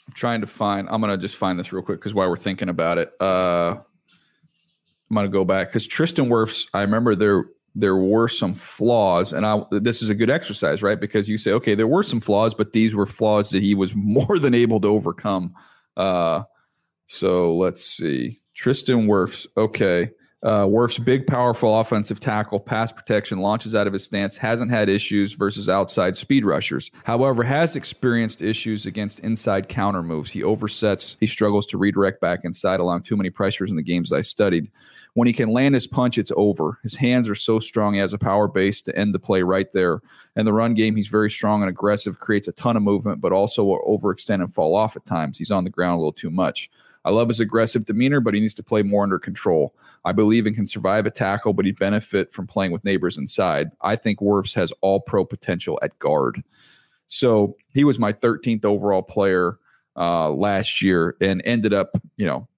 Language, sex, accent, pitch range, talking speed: English, male, American, 95-115 Hz, 210 wpm